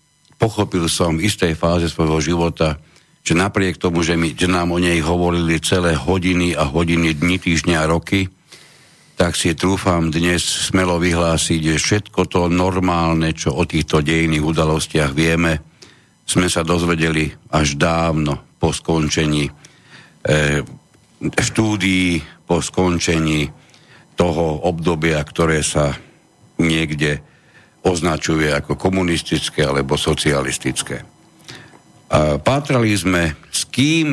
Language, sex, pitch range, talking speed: Slovak, male, 80-90 Hz, 115 wpm